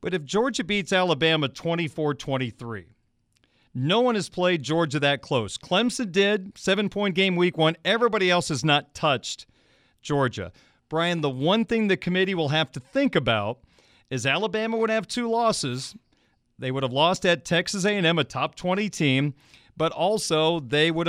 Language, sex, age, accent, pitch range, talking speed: English, male, 40-59, American, 145-190 Hz, 160 wpm